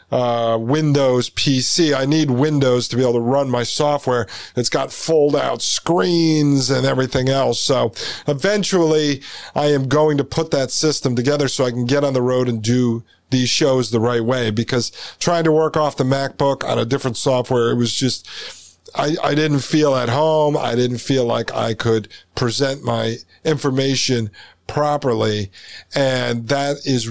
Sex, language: male, English